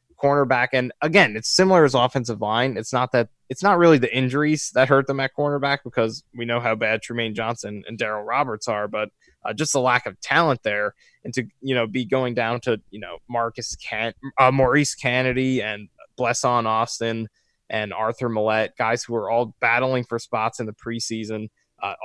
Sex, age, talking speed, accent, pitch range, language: male, 20-39, 195 wpm, American, 110-130 Hz, English